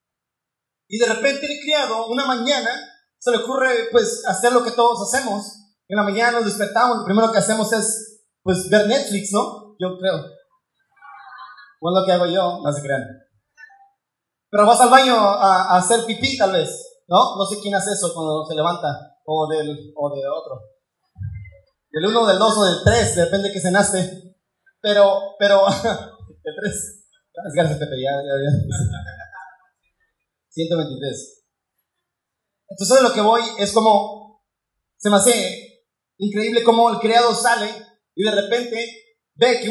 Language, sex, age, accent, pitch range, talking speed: Spanish, male, 30-49, Mexican, 185-235 Hz, 165 wpm